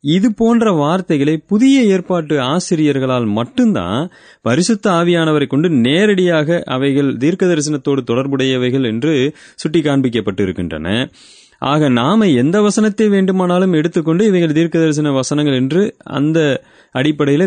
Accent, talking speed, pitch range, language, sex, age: native, 105 wpm, 125-175 Hz, Tamil, male, 30-49